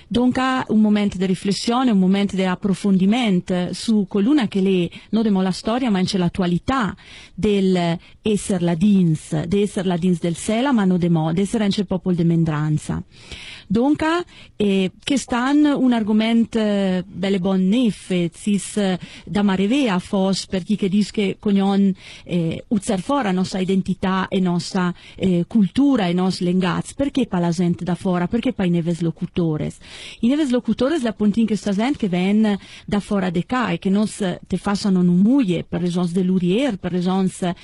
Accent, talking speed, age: native, 170 wpm, 40-59